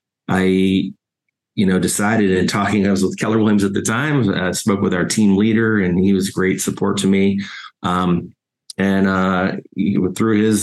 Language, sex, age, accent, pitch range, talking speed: English, male, 30-49, American, 90-105 Hz, 185 wpm